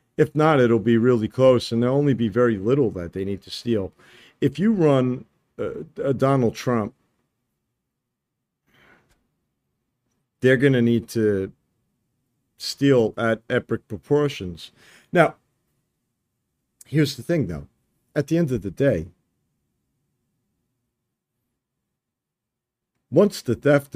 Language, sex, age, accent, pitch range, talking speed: English, male, 50-69, American, 105-135 Hz, 120 wpm